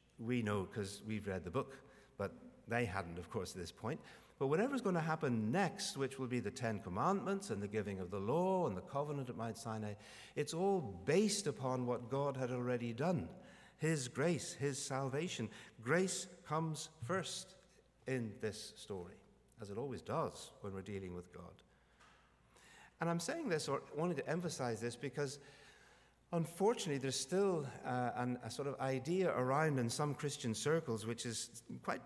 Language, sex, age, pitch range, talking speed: English, male, 60-79, 115-160 Hz, 175 wpm